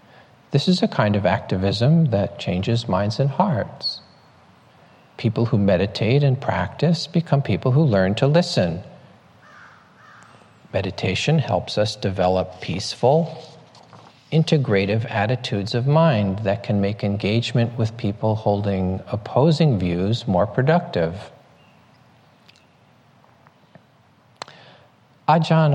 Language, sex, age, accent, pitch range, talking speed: English, male, 50-69, American, 100-130 Hz, 100 wpm